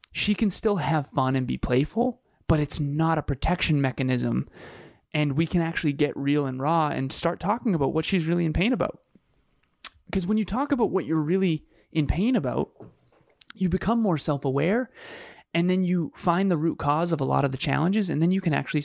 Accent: American